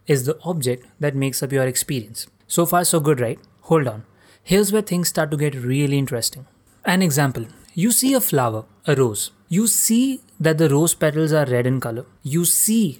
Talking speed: 200 wpm